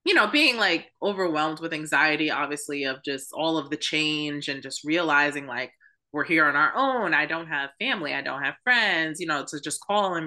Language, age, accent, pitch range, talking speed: English, 20-39, American, 155-225 Hz, 215 wpm